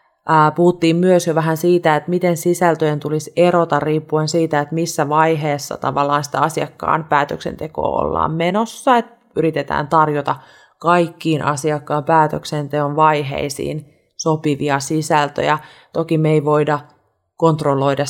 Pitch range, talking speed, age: 150-185 Hz, 115 wpm, 30-49